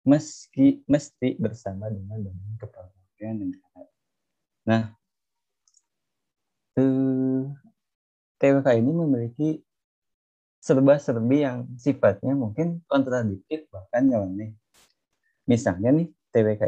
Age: 20-39